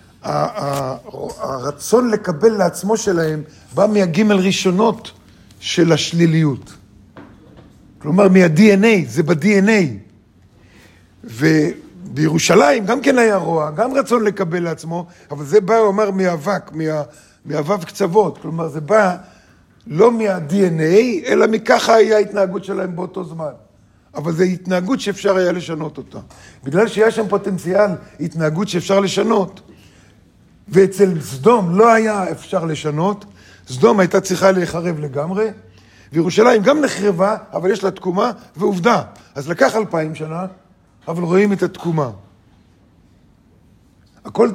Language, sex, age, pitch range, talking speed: Hebrew, male, 50-69, 150-205 Hz, 115 wpm